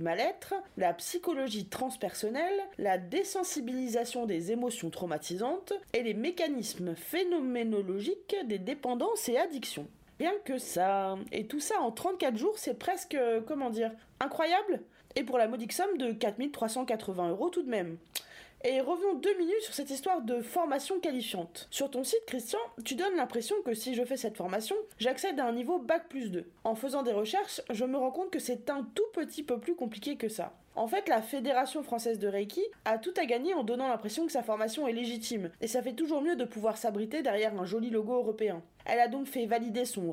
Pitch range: 220-300 Hz